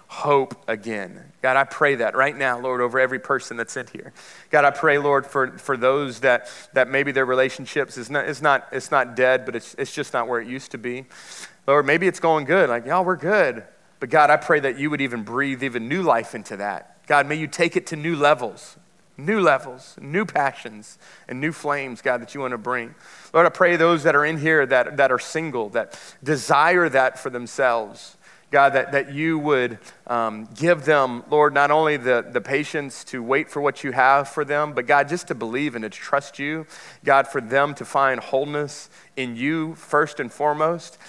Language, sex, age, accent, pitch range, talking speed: English, male, 30-49, American, 130-160 Hz, 215 wpm